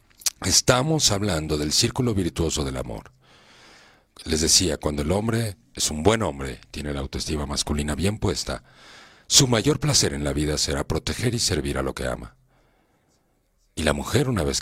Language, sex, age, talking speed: Spanish, male, 50-69, 170 wpm